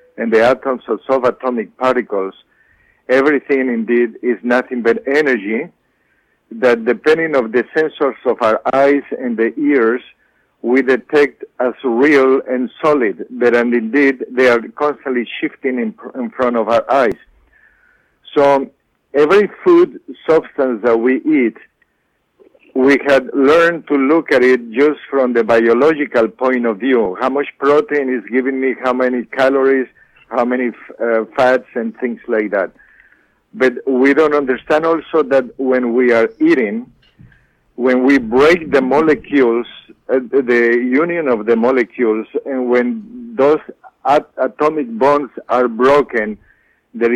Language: English